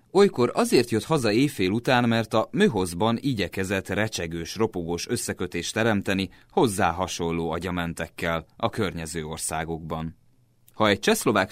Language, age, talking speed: Hungarian, 30-49, 120 wpm